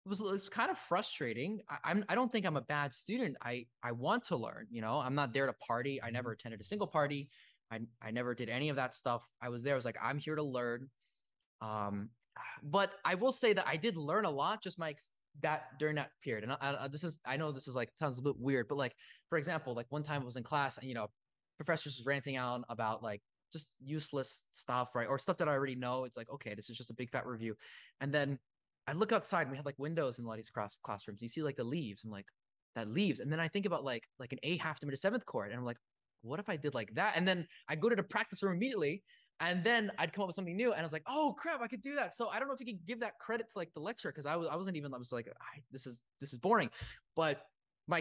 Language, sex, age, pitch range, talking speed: English, male, 20-39, 125-175 Hz, 285 wpm